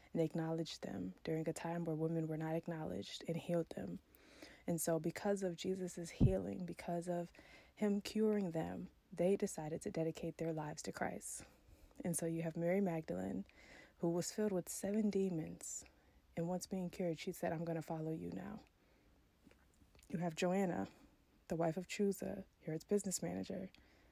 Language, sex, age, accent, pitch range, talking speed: English, female, 20-39, American, 160-190 Hz, 165 wpm